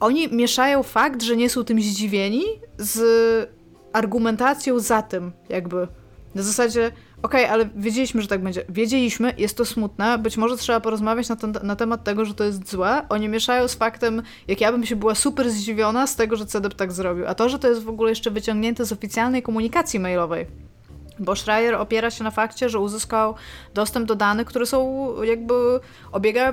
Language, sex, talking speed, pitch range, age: Polish, female, 190 wpm, 195-235 Hz, 20-39